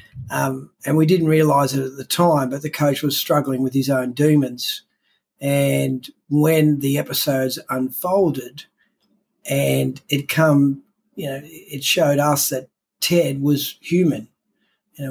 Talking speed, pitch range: 140 wpm, 130-155 Hz